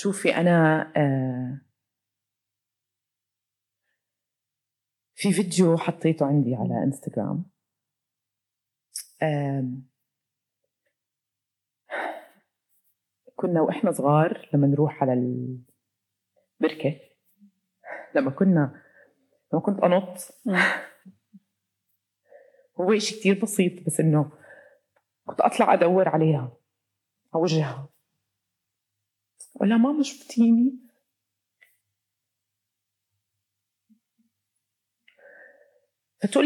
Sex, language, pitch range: female, Arabic, 120-195 Hz